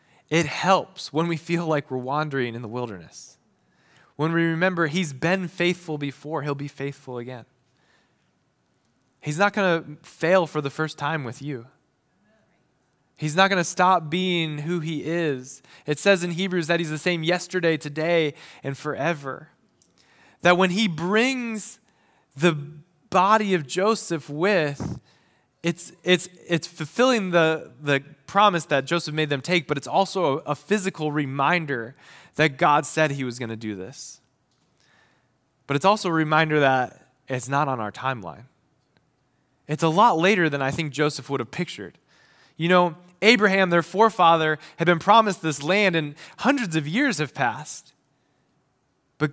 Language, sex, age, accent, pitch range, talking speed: English, male, 20-39, American, 140-180 Hz, 155 wpm